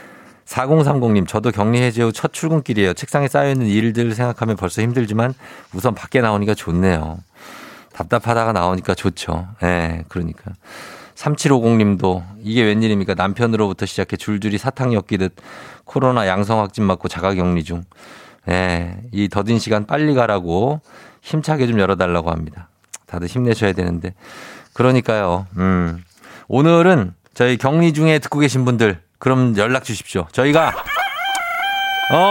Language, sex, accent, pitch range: Korean, male, native, 95-135 Hz